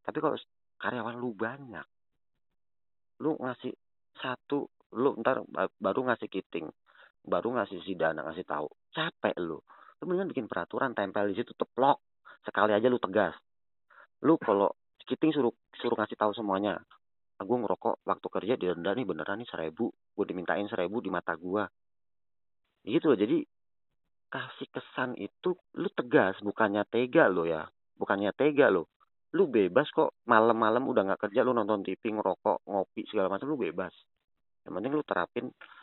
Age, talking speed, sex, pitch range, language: 40-59, 150 wpm, male, 95-130 Hz, Indonesian